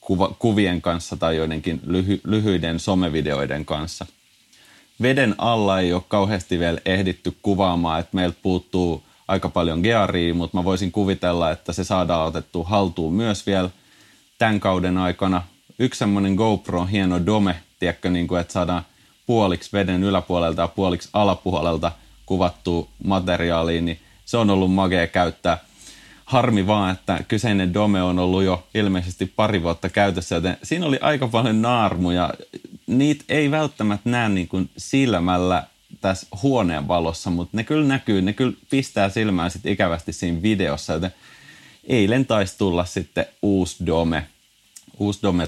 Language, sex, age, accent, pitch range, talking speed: Finnish, male, 30-49, native, 85-105 Hz, 140 wpm